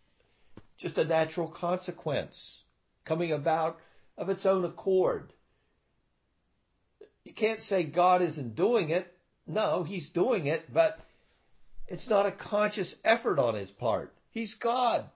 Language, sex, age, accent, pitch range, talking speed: English, male, 60-79, American, 145-195 Hz, 125 wpm